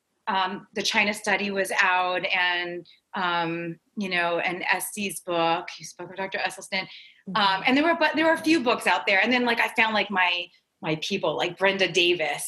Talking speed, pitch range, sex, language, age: 200 wpm, 180-250 Hz, female, English, 30-49